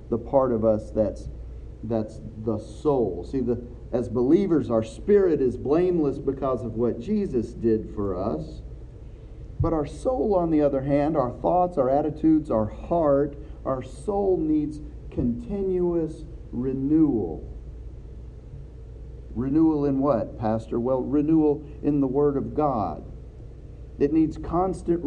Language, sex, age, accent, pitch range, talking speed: English, male, 40-59, American, 115-160 Hz, 130 wpm